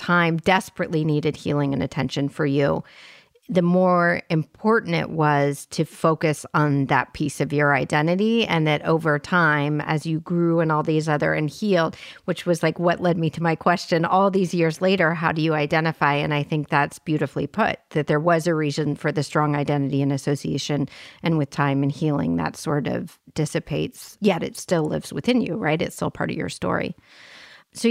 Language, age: English, 40-59